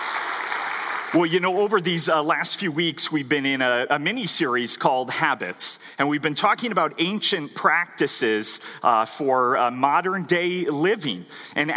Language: English